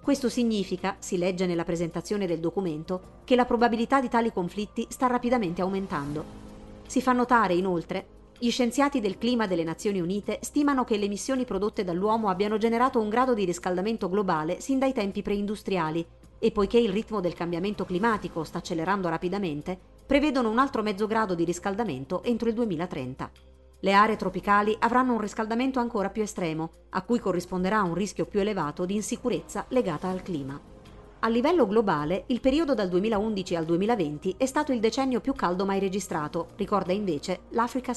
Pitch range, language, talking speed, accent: 175-235 Hz, Italian, 170 wpm, native